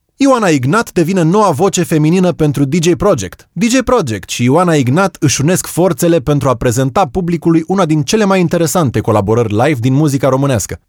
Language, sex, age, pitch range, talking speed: Romanian, male, 30-49, 120-170 Hz, 170 wpm